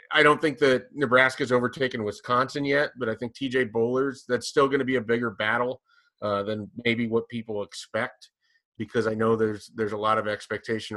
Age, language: 30-49, English